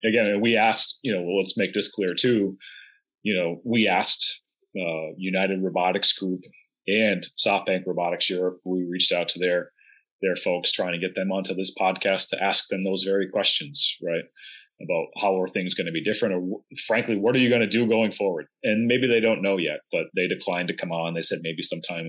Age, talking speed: 30-49, 210 wpm